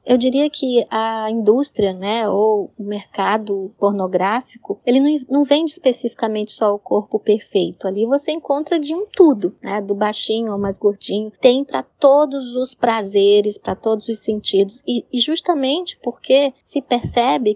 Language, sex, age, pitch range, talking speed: Portuguese, female, 20-39, 210-250 Hz, 155 wpm